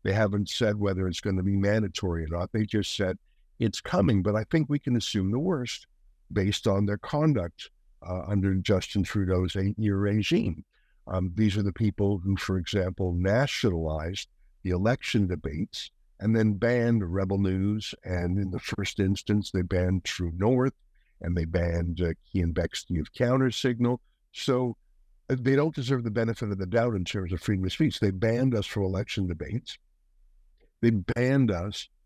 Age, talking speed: 60-79, 170 wpm